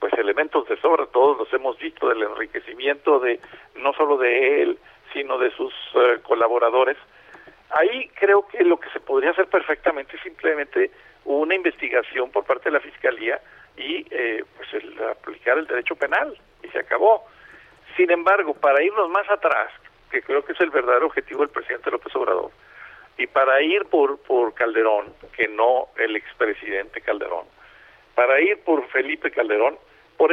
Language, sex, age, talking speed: Spanish, male, 50-69, 165 wpm